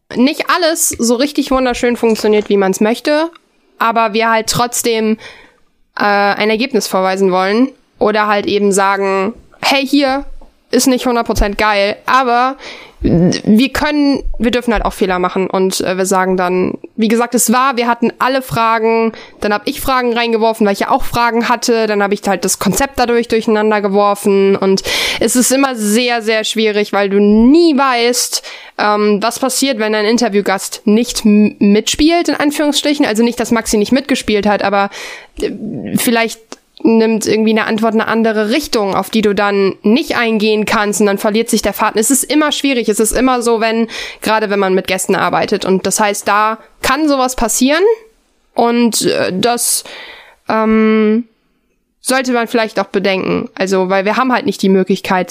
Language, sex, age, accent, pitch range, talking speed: German, female, 10-29, German, 200-245 Hz, 175 wpm